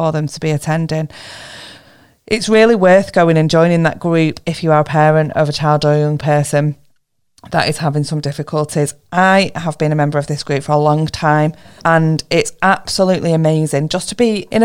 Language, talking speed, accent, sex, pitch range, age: English, 195 wpm, British, female, 155-180 Hz, 30-49